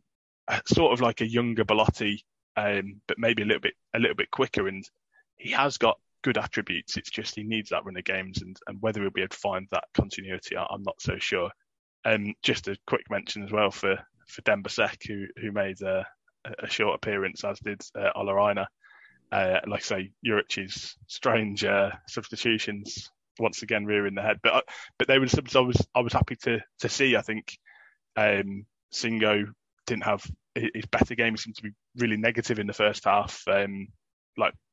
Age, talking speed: 20-39, 200 wpm